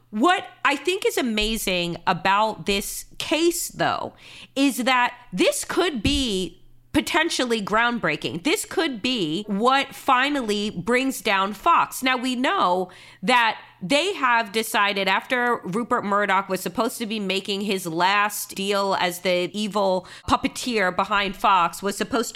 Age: 30-49